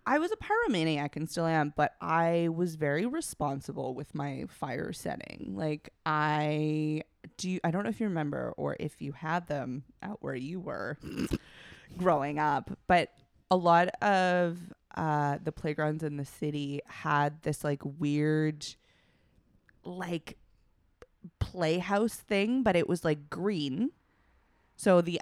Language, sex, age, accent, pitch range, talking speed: English, female, 20-39, American, 145-175 Hz, 145 wpm